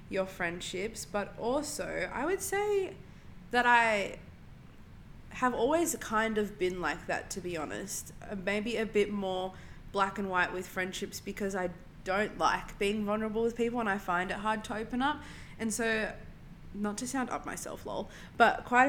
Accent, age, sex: Australian, 20-39, female